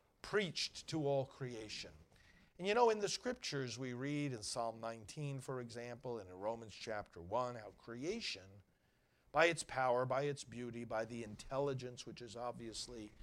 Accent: American